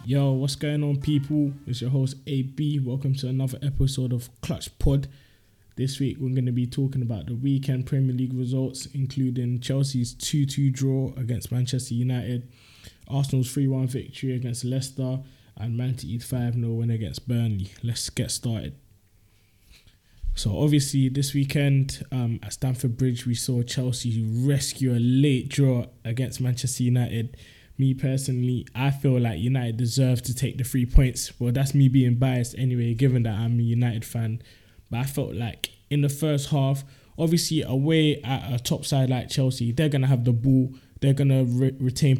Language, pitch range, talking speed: English, 120-135 Hz, 170 wpm